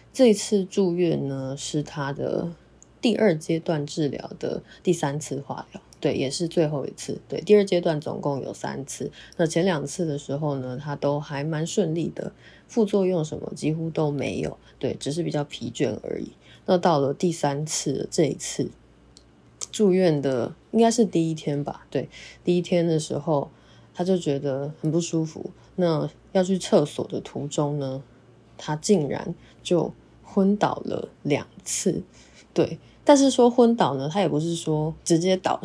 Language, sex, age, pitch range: Chinese, female, 20-39, 145-180 Hz